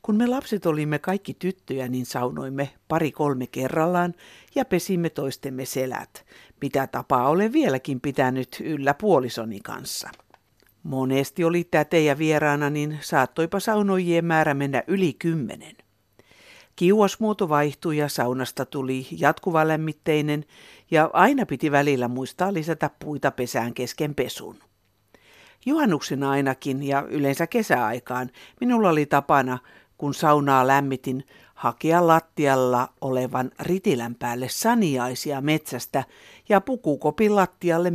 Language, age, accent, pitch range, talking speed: Finnish, 60-79, native, 135-180 Hz, 110 wpm